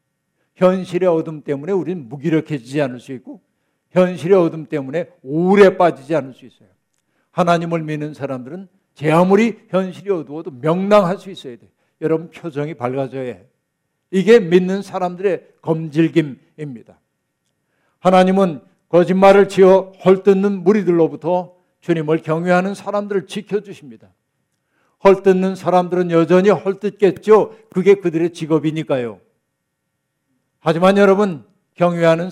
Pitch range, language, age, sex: 150-190 Hz, Korean, 60-79, male